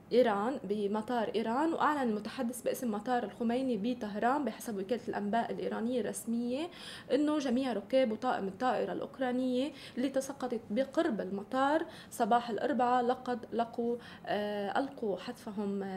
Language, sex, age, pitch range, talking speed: Arabic, female, 20-39, 215-260 Hz, 115 wpm